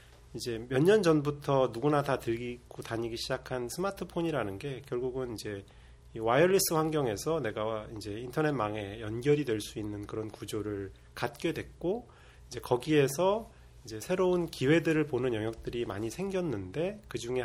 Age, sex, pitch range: 30-49, male, 100-155 Hz